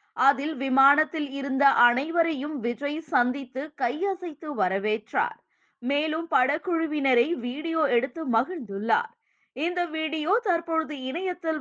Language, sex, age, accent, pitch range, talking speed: Tamil, female, 20-39, native, 260-325 Hz, 90 wpm